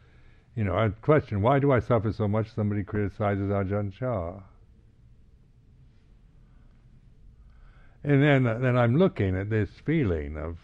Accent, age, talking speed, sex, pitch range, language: American, 60-79, 135 wpm, male, 85-105 Hz, English